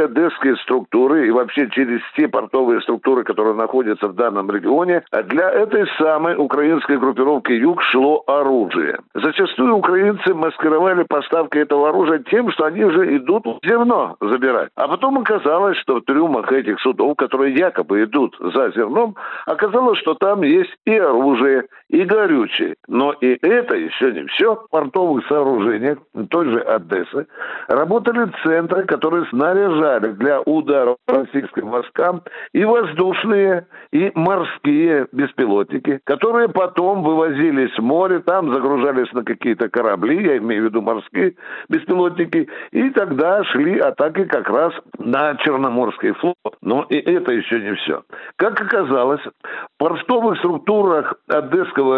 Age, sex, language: 60-79, male, Russian